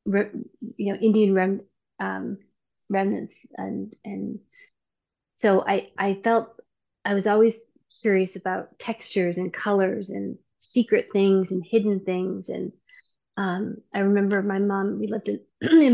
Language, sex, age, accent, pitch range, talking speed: English, female, 30-49, American, 190-215 Hz, 130 wpm